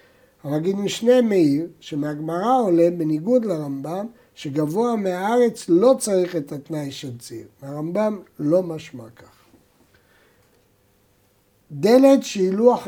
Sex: male